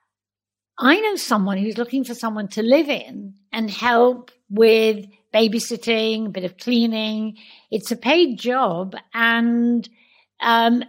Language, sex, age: English, female, 60-79